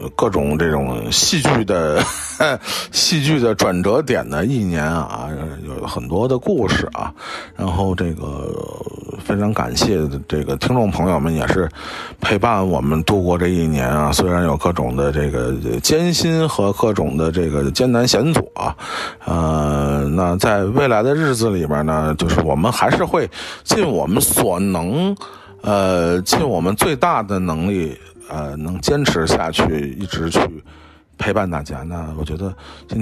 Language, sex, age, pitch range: Chinese, male, 50-69, 80-110 Hz